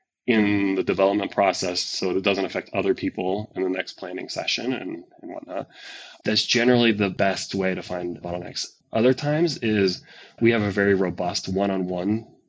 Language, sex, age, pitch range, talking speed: English, male, 20-39, 95-115 Hz, 170 wpm